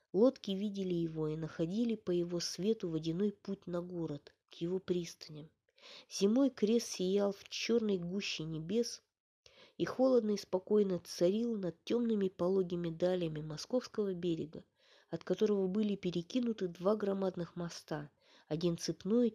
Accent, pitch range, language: native, 170-220 Hz, Russian